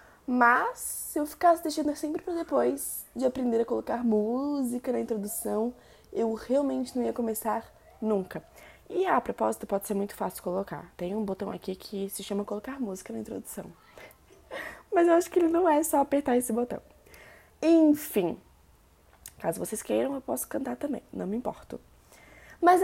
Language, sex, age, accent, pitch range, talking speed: Portuguese, female, 20-39, Brazilian, 210-295 Hz, 165 wpm